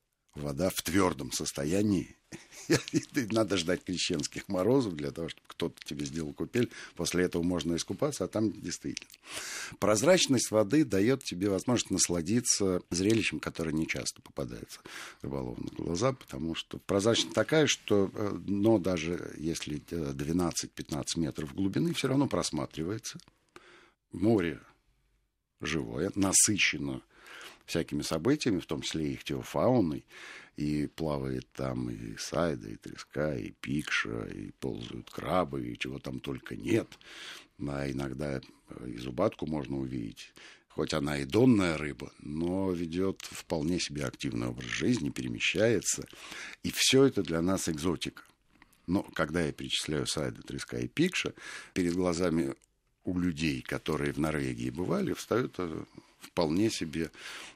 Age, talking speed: 60-79, 125 wpm